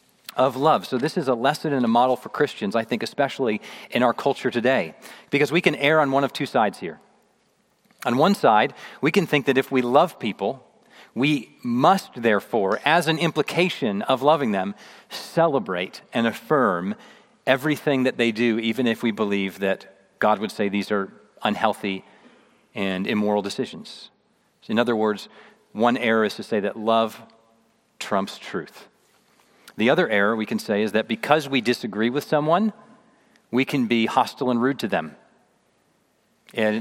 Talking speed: 170 wpm